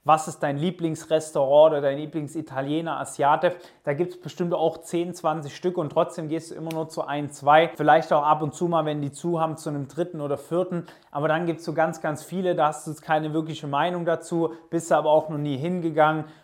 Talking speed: 225 wpm